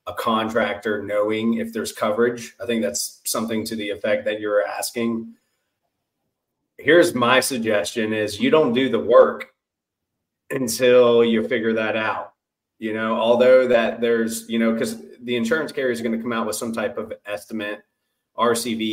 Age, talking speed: 30-49, 165 wpm